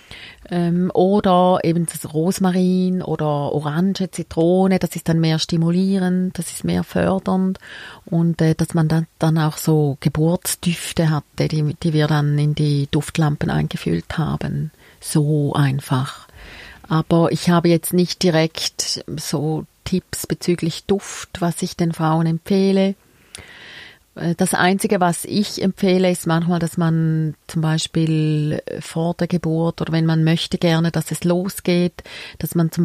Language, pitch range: German, 160-180 Hz